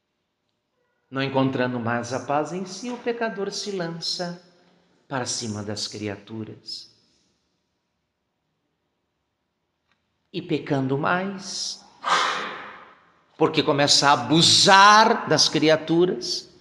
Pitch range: 120-165 Hz